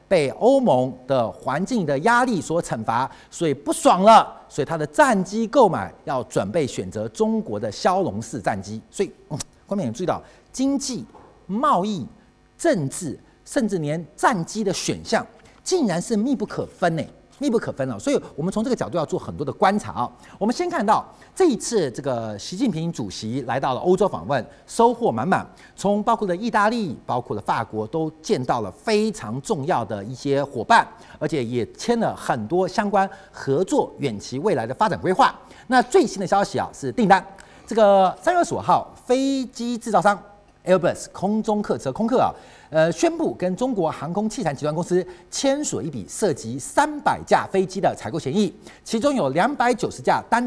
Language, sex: Chinese, male